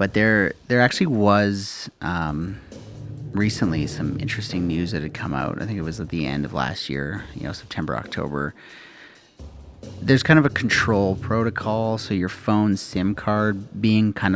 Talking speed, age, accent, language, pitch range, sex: 170 wpm, 30-49, American, English, 85-110 Hz, male